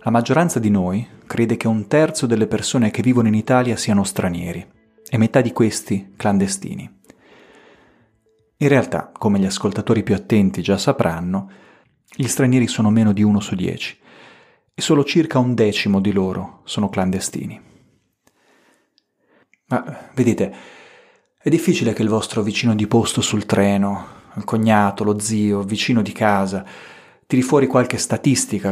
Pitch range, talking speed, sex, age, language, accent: 100-120 Hz, 150 wpm, male, 30-49, Italian, native